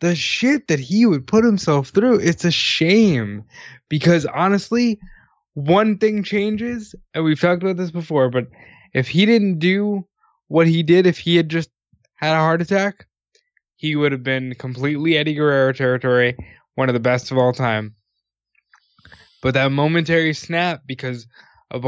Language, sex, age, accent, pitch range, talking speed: English, male, 20-39, American, 125-165 Hz, 160 wpm